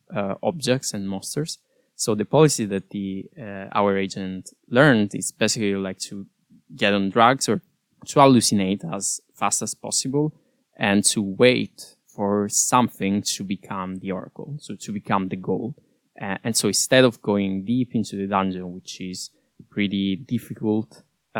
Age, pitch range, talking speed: 20-39, 95-110 Hz, 160 wpm